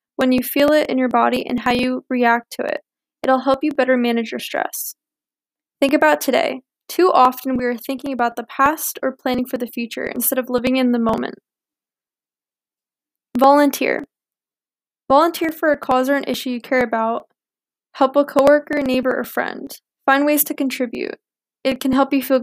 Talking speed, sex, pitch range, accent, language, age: 180 wpm, female, 250-285 Hz, American, English, 10-29